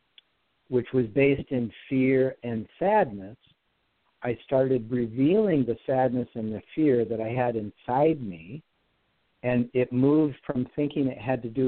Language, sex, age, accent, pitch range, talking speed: English, male, 60-79, American, 115-140 Hz, 150 wpm